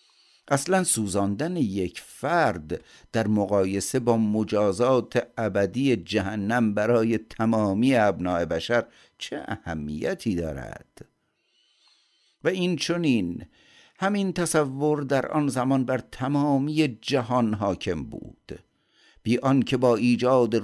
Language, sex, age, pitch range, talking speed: Persian, male, 50-69, 100-125 Hz, 100 wpm